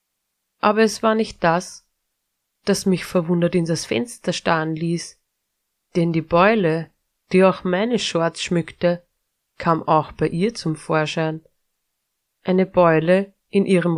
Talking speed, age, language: 135 wpm, 30-49, English